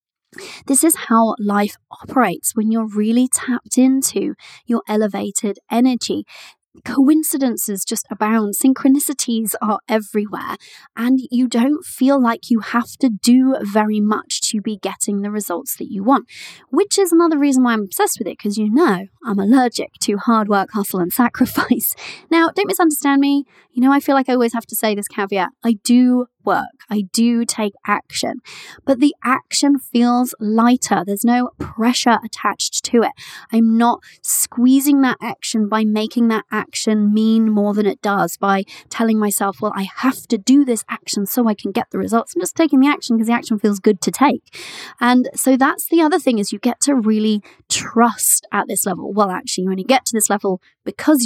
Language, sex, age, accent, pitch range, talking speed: English, female, 20-39, British, 210-265 Hz, 185 wpm